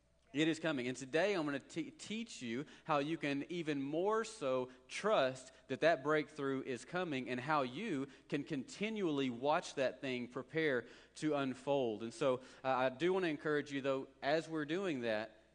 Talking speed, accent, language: 185 wpm, American, English